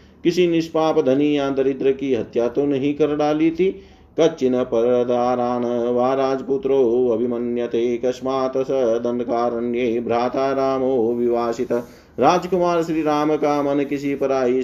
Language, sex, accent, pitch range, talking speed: Hindi, male, native, 115-135 Hz, 80 wpm